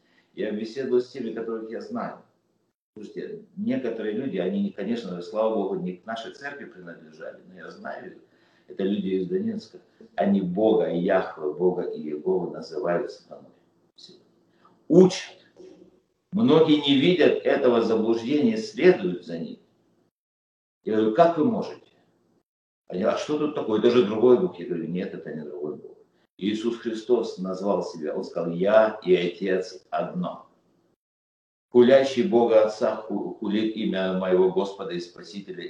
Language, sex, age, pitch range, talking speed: Russian, male, 50-69, 100-140 Hz, 140 wpm